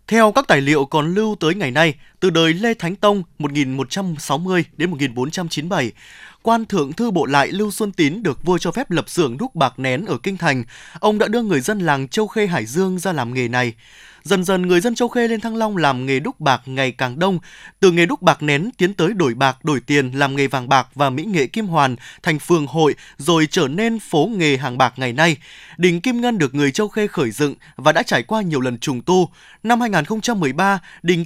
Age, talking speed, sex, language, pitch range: 20-39, 230 wpm, male, Vietnamese, 145-205 Hz